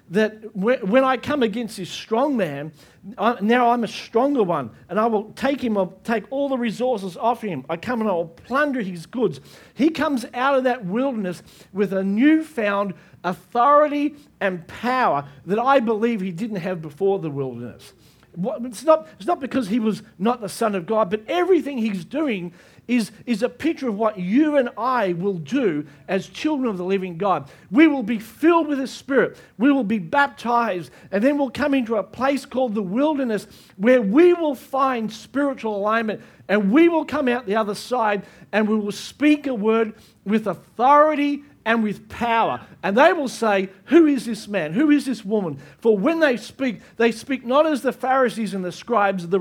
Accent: Australian